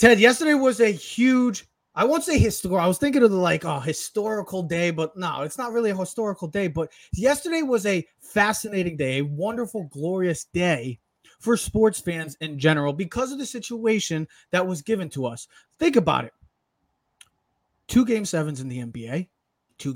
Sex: male